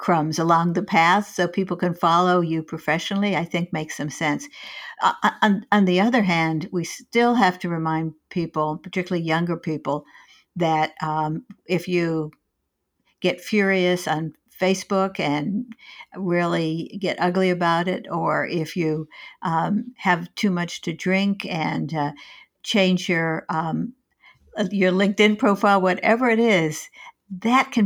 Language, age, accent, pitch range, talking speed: English, 60-79, American, 160-200 Hz, 140 wpm